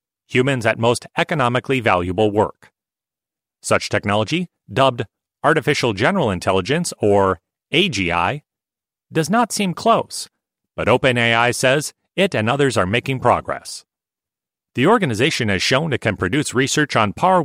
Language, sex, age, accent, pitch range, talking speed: English, male, 40-59, American, 110-150 Hz, 125 wpm